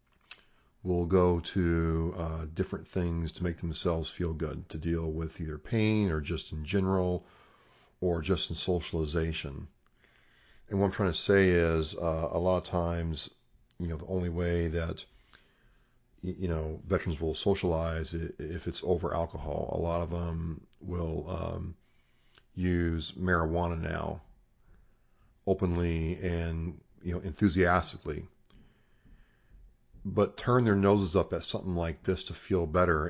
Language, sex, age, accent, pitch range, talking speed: English, male, 40-59, American, 80-95 Hz, 140 wpm